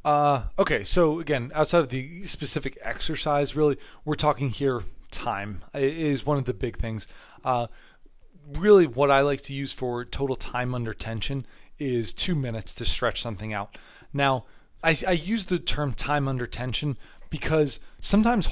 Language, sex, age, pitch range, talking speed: English, male, 30-49, 120-150 Hz, 160 wpm